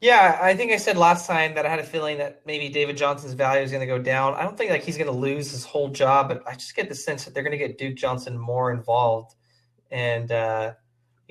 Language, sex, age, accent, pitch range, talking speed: English, male, 20-39, American, 120-145 Hz, 265 wpm